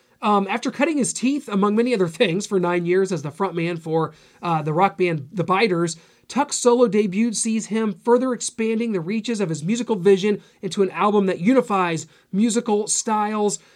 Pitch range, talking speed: 175-215 Hz, 185 wpm